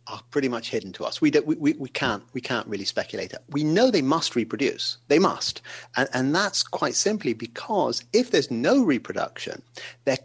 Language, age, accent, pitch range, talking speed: English, 40-59, British, 115-135 Hz, 205 wpm